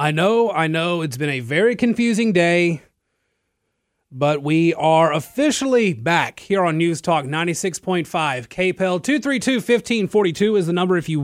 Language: English